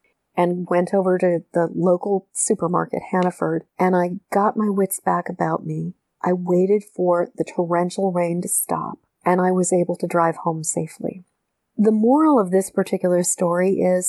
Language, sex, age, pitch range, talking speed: English, female, 40-59, 180-205 Hz, 165 wpm